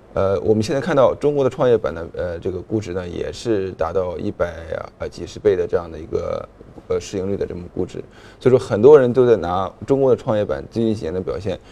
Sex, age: male, 20-39